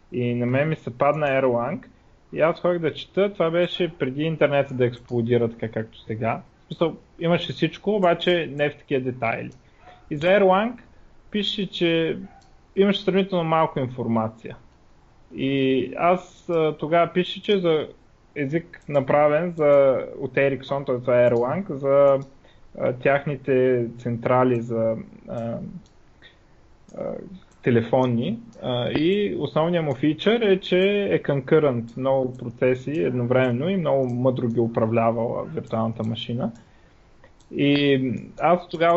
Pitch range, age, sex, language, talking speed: 125-170 Hz, 20-39, male, Bulgarian, 125 wpm